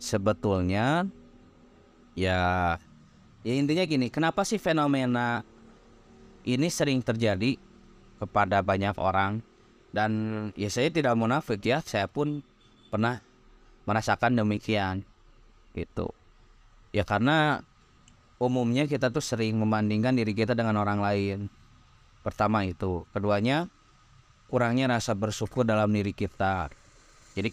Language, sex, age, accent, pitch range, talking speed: Indonesian, male, 20-39, native, 105-125 Hz, 105 wpm